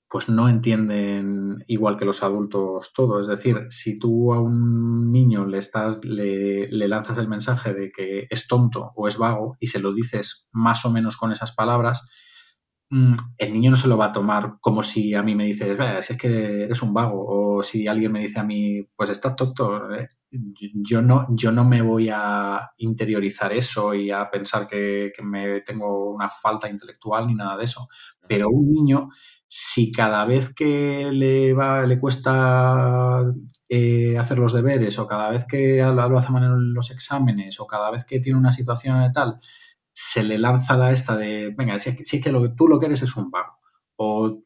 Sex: male